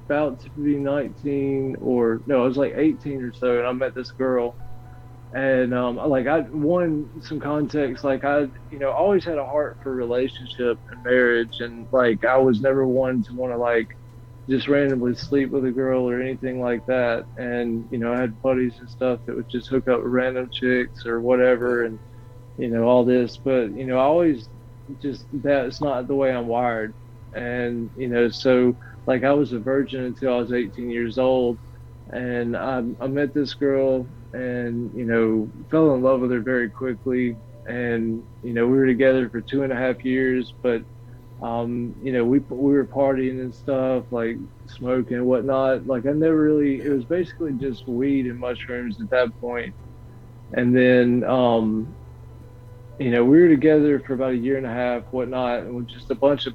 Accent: American